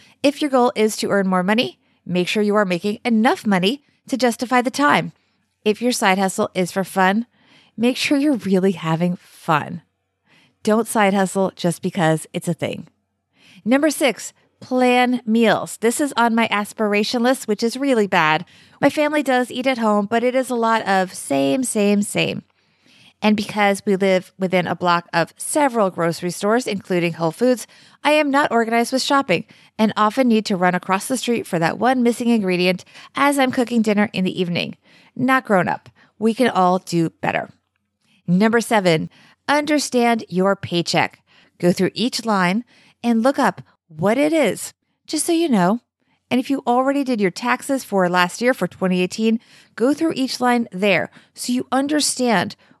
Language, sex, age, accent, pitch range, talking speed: English, female, 30-49, American, 185-250 Hz, 175 wpm